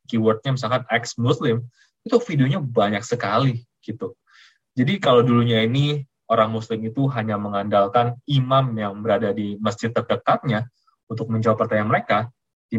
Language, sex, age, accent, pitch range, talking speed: Indonesian, male, 20-39, native, 110-140 Hz, 130 wpm